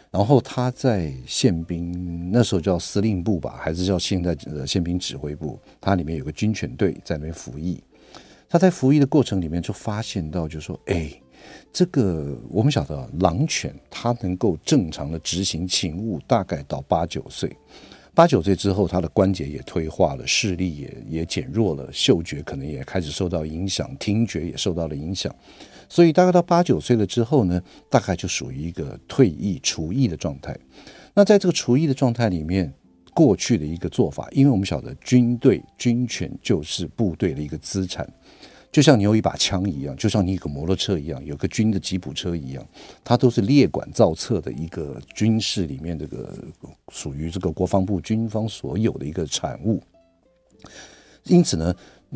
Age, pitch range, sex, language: 50-69, 85-120 Hz, male, Chinese